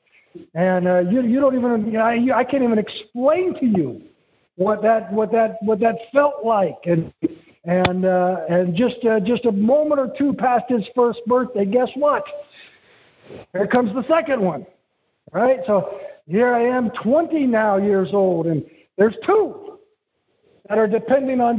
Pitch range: 200-270 Hz